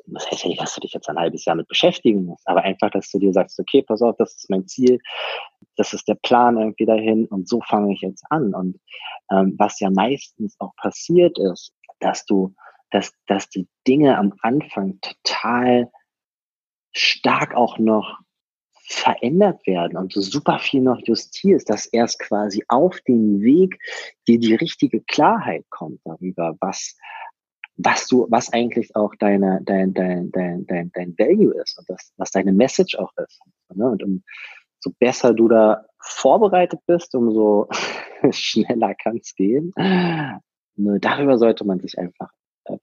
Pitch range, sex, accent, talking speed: 95-130 Hz, male, German, 170 wpm